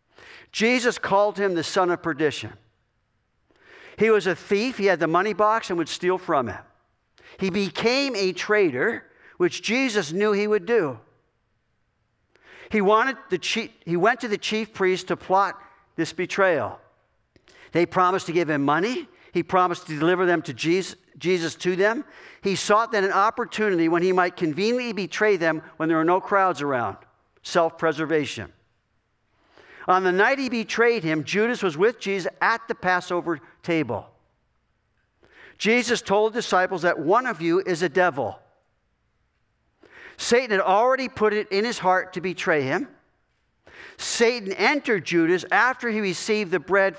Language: English